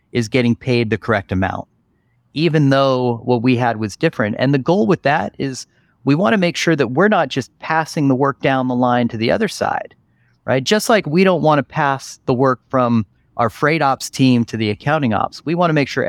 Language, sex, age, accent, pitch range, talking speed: English, male, 30-49, American, 110-150 Hz, 220 wpm